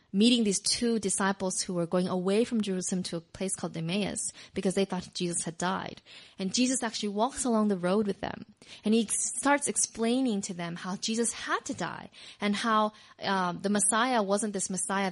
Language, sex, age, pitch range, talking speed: English, female, 20-39, 185-220 Hz, 195 wpm